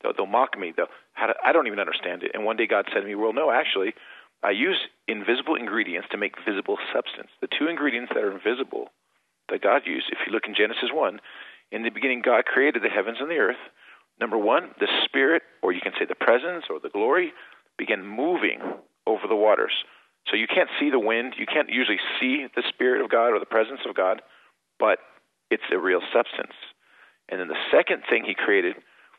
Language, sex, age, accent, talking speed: English, male, 40-59, American, 210 wpm